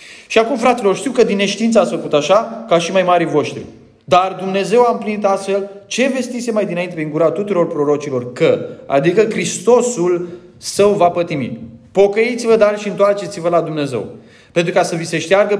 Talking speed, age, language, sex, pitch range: 175 wpm, 30-49, Romanian, male, 150-200 Hz